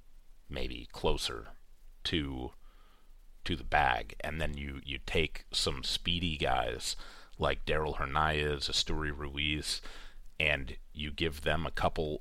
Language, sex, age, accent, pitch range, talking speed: English, male, 30-49, American, 75-90 Hz, 125 wpm